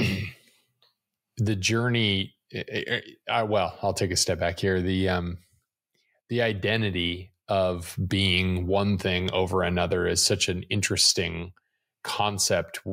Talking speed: 115 wpm